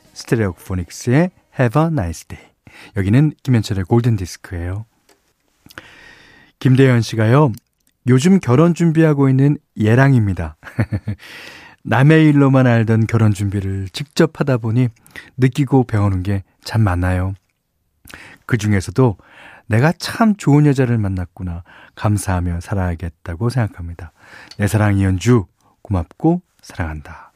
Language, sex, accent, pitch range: Korean, male, native, 100-145 Hz